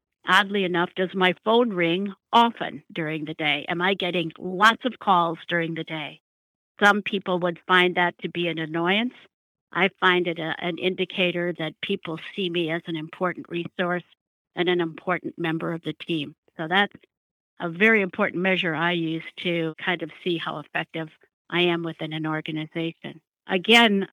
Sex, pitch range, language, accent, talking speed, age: female, 170-195 Hz, English, American, 170 wpm, 60-79